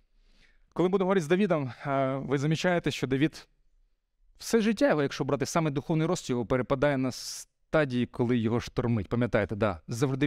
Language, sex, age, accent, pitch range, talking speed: Ukrainian, male, 30-49, native, 100-130 Hz, 150 wpm